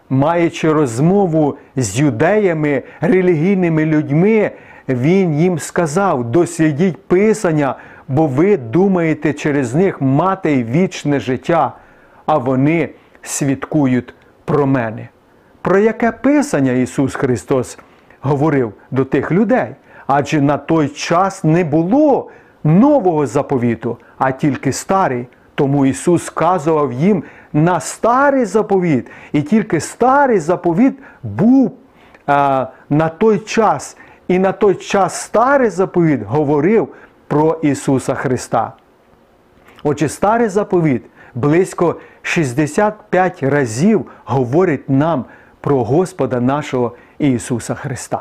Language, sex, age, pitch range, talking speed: Ukrainian, male, 40-59, 135-185 Hz, 105 wpm